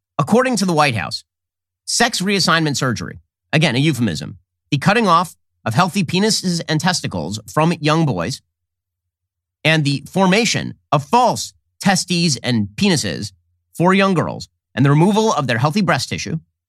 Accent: American